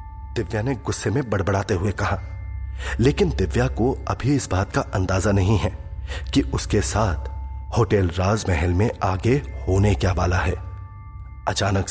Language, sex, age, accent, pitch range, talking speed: Hindi, male, 30-49, native, 90-115 Hz, 145 wpm